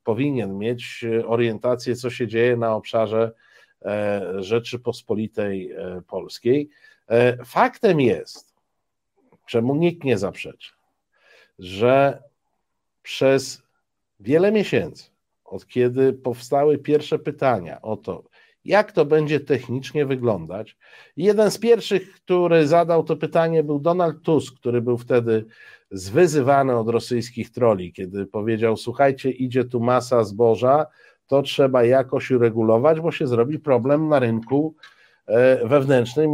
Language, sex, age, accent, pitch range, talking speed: Polish, male, 50-69, native, 115-155 Hz, 115 wpm